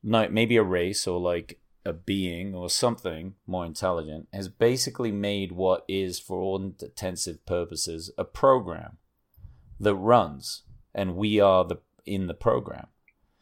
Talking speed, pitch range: 145 wpm, 90-110 Hz